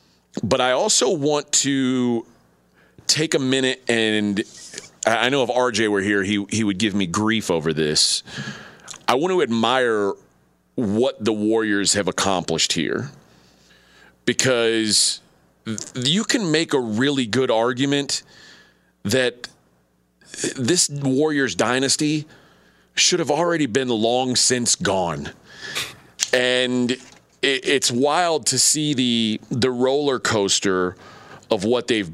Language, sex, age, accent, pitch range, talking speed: English, male, 40-59, American, 100-135 Hz, 120 wpm